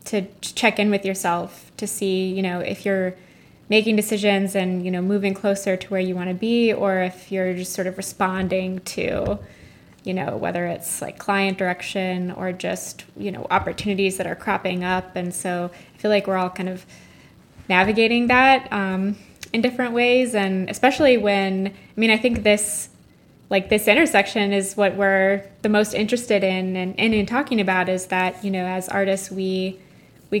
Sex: female